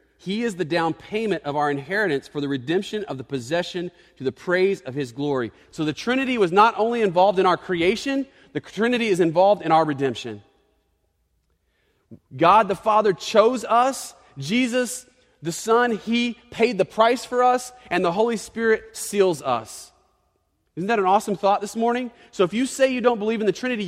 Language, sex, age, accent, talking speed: English, male, 30-49, American, 185 wpm